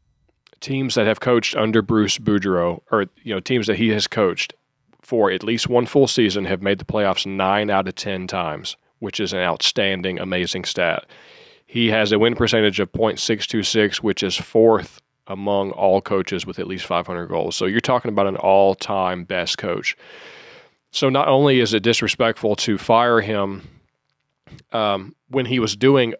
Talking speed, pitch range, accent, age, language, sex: 175 wpm, 100-120 Hz, American, 40-59, English, male